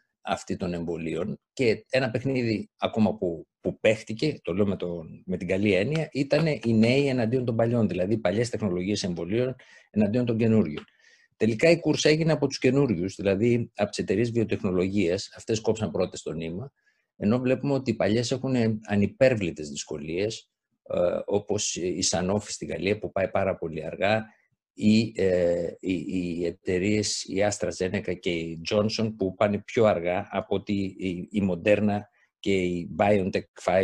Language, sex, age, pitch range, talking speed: Greek, male, 50-69, 95-125 Hz, 155 wpm